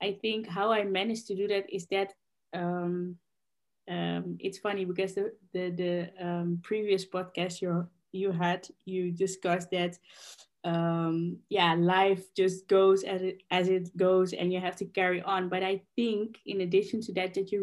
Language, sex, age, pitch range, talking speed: English, female, 20-39, 175-195 Hz, 175 wpm